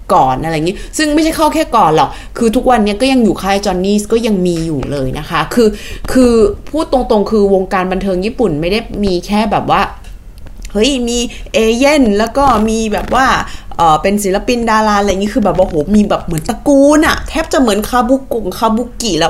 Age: 20-39